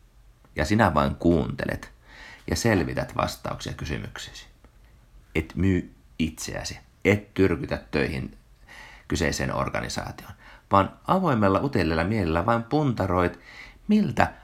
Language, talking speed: Finnish, 95 wpm